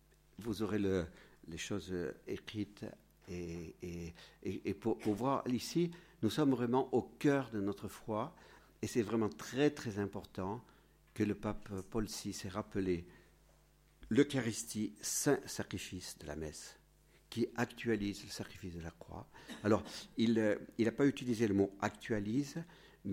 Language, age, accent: French, 50-69, French